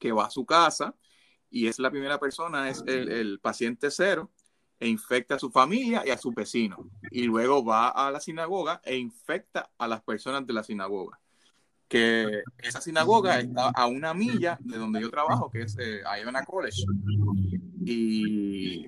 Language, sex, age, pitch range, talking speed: Spanish, male, 30-49, 110-140 Hz, 175 wpm